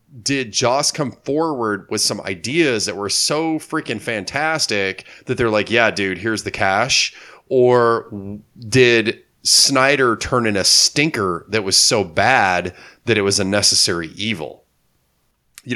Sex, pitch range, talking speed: male, 95-115 Hz, 145 wpm